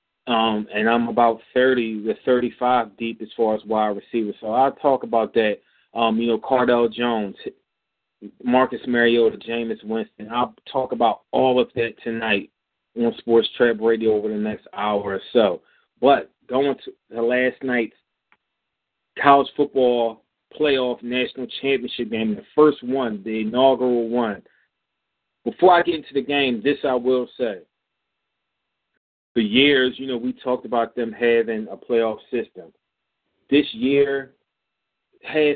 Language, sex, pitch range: English, male, 115-140 Hz